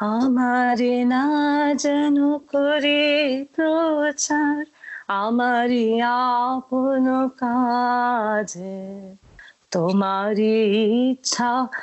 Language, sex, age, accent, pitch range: Bengali, female, 30-49, native, 245-370 Hz